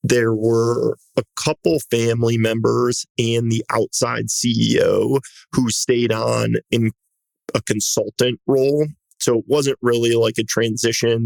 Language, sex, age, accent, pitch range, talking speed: English, male, 30-49, American, 115-130 Hz, 130 wpm